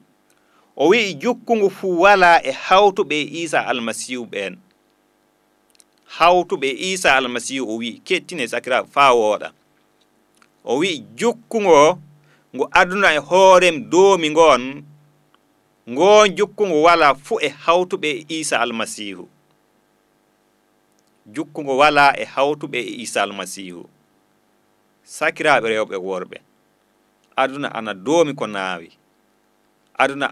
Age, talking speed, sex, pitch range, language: 40-59, 105 wpm, male, 110-175 Hz, English